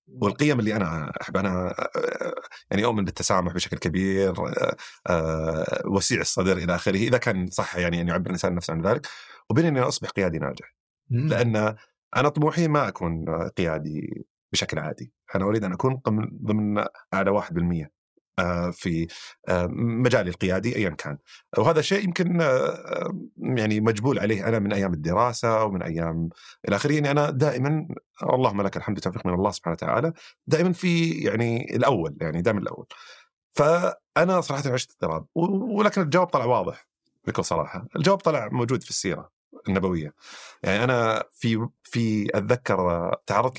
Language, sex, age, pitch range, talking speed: Arabic, male, 30-49, 90-140 Hz, 145 wpm